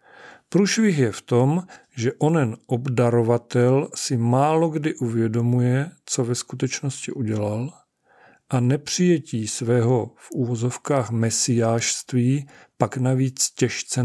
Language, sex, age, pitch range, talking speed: Czech, male, 40-59, 120-140 Hz, 105 wpm